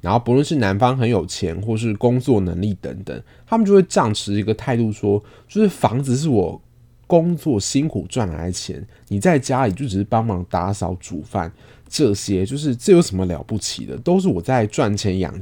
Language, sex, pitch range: Chinese, male, 95-120 Hz